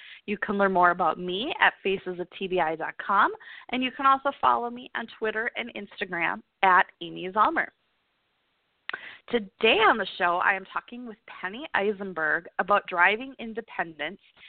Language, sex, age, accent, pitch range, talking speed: English, female, 20-39, American, 180-230 Hz, 140 wpm